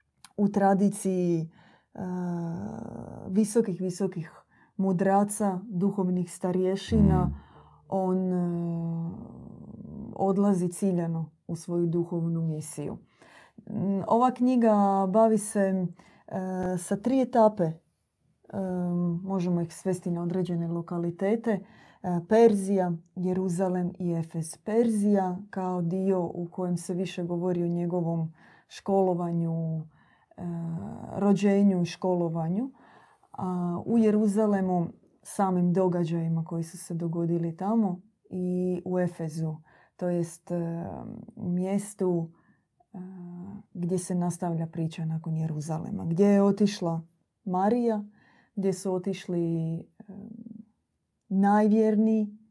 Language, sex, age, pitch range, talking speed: Croatian, female, 20-39, 170-200 Hz, 90 wpm